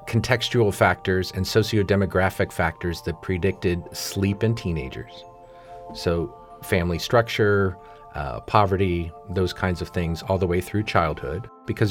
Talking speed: 125 wpm